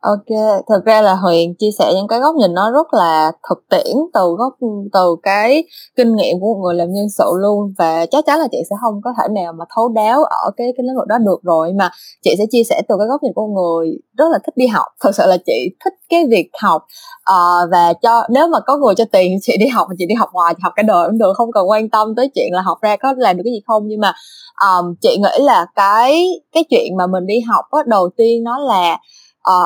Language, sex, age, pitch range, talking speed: Vietnamese, female, 20-39, 195-280 Hz, 265 wpm